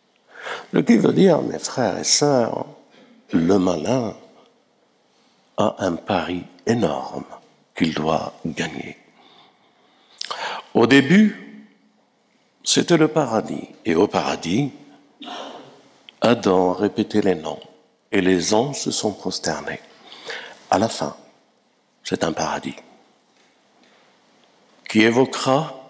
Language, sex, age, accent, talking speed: French, male, 60-79, French, 100 wpm